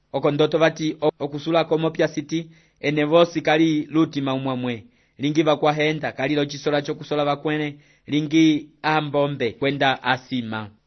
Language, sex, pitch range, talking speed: English, male, 135-165 Hz, 115 wpm